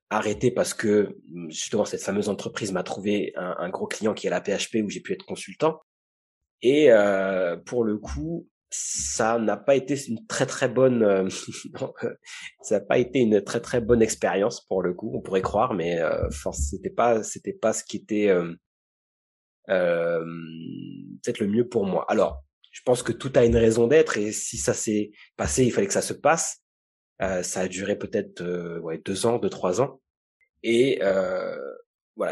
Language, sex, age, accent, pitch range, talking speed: French, male, 30-49, French, 95-130 Hz, 190 wpm